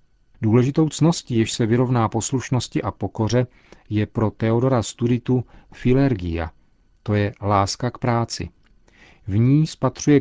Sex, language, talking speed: male, Czech, 125 wpm